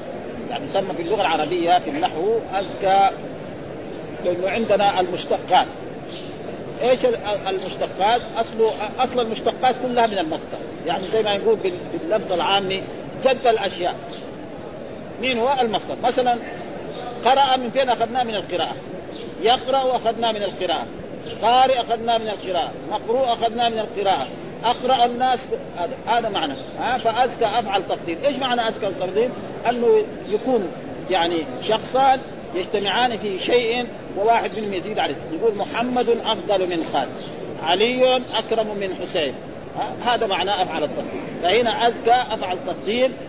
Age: 40-59